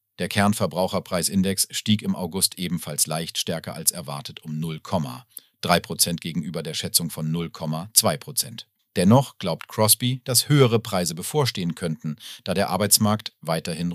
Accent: German